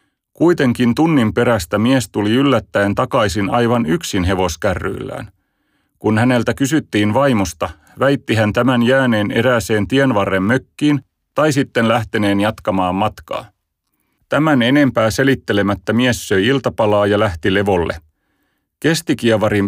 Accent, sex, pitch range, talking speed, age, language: native, male, 95-125 Hz, 110 wpm, 30-49, Finnish